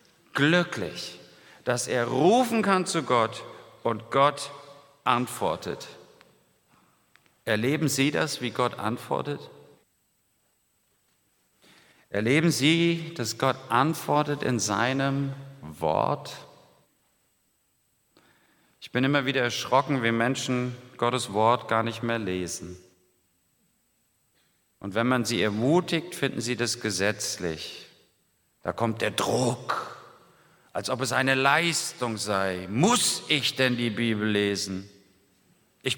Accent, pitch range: German, 115-165 Hz